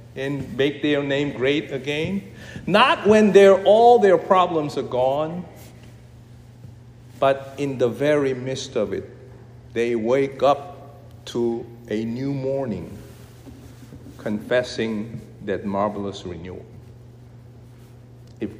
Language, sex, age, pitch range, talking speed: English, male, 50-69, 120-160 Hz, 105 wpm